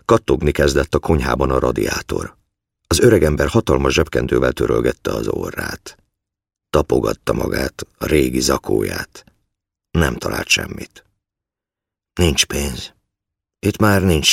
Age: 50-69